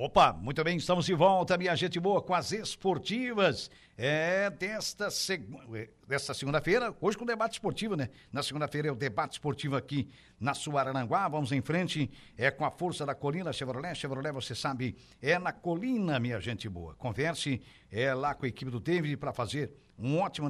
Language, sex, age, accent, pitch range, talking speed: Portuguese, male, 60-79, Brazilian, 140-175 Hz, 180 wpm